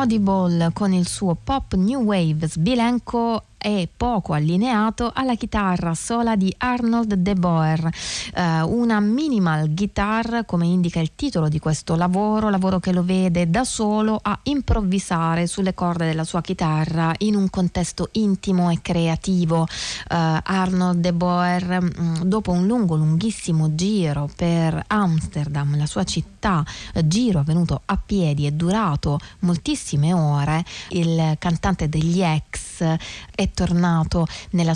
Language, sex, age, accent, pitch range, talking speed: Italian, female, 30-49, native, 160-200 Hz, 130 wpm